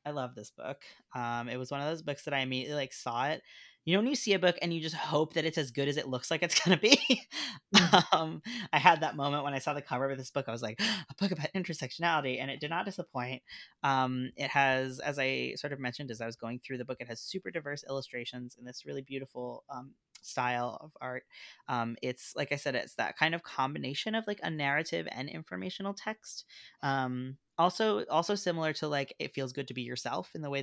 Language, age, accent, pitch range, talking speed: English, 20-39, American, 125-160 Hz, 245 wpm